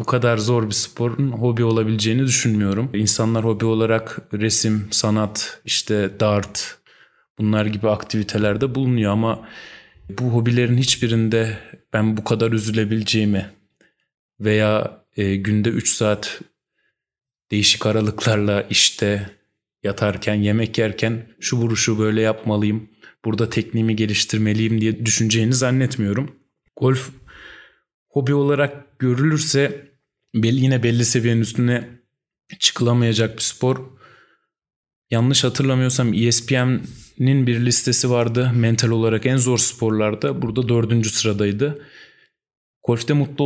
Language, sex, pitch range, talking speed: Turkish, male, 110-130 Hz, 105 wpm